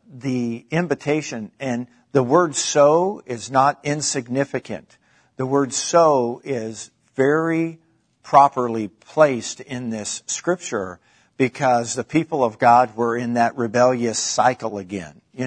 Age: 50-69